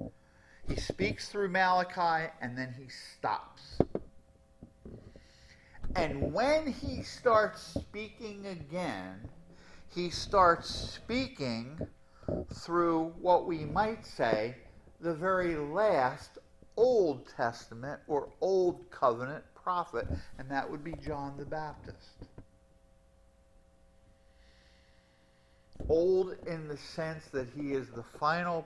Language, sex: English, male